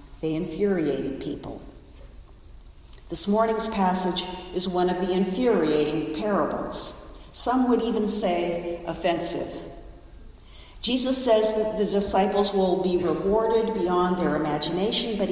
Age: 50-69